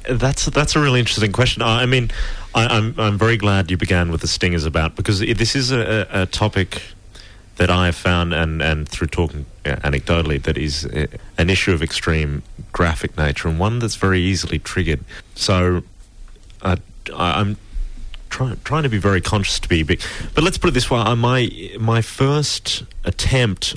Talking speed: 170 wpm